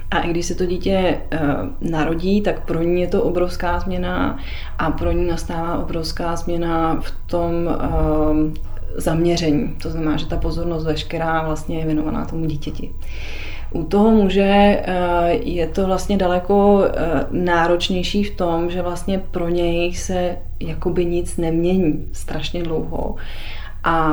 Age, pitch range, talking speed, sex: 30-49, 165-185 Hz, 125 wpm, female